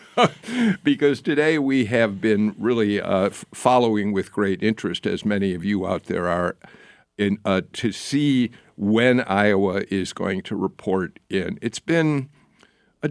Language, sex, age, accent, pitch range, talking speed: English, male, 50-69, American, 105-150 Hz, 150 wpm